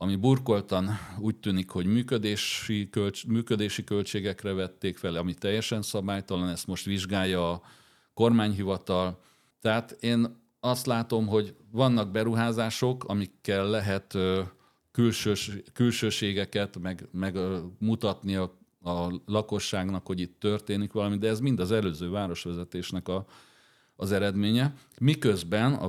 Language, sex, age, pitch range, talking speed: Hungarian, male, 40-59, 95-115 Hz, 115 wpm